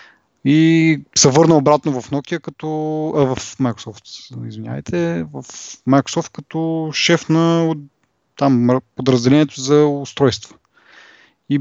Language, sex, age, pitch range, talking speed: Bulgarian, male, 20-39, 115-145 Hz, 110 wpm